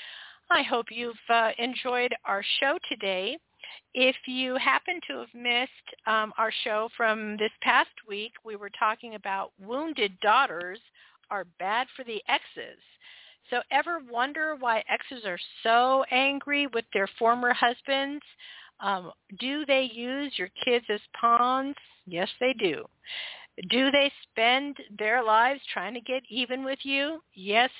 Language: English